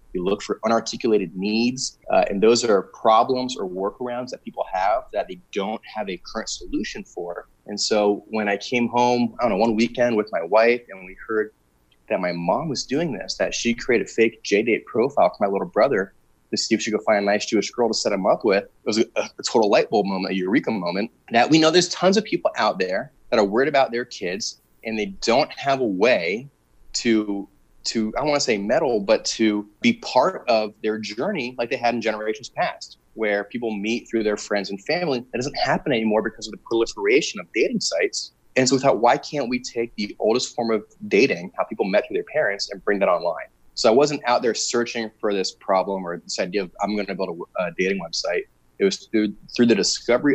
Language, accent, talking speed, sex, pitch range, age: English, American, 230 wpm, male, 100-120 Hz, 30-49